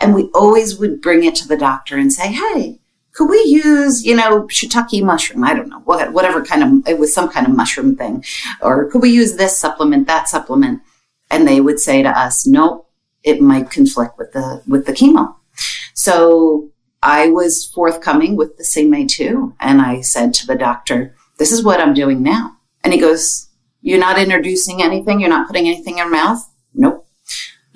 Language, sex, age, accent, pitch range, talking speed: English, female, 40-59, American, 170-260 Hz, 195 wpm